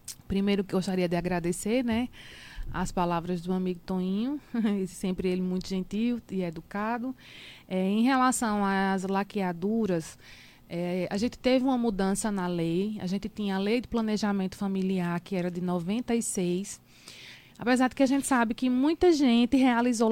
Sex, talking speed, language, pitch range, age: female, 150 wpm, Portuguese, 190-240 Hz, 20-39